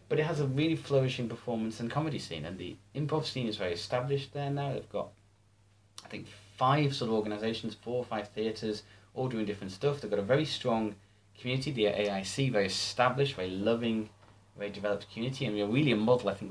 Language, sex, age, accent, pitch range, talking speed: English, male, 30-49, British, 100-130 Hz, 205 wpm